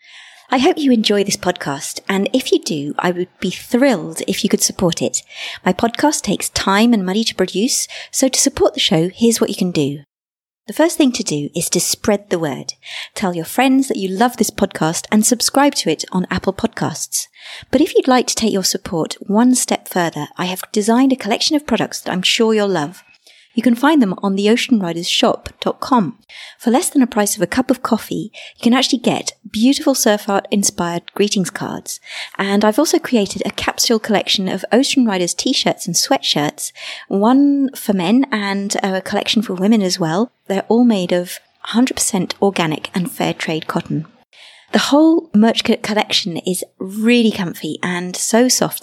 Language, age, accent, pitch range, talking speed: English, 30-49, British, 180-245 Hz, 190 wpm